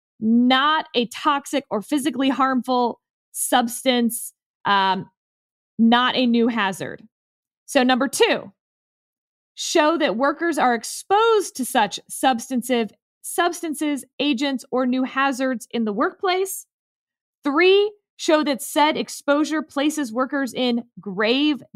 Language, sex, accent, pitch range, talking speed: English, female, American, 225-310 Hz, 110 wpm